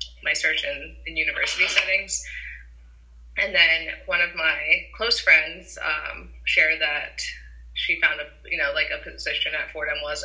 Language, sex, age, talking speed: English, female, 20-39, 160 wpm